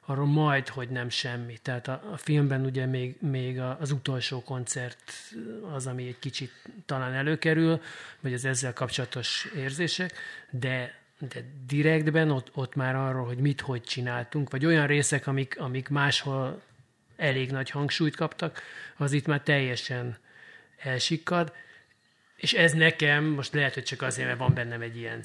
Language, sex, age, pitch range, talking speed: Hungarian, male, 30-49, 125-145 Hz, 155 wpm